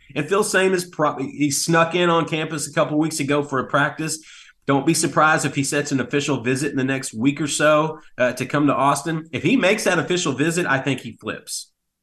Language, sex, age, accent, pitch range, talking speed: English, male, 30-49, American, 135-155 Hz, 235 wpm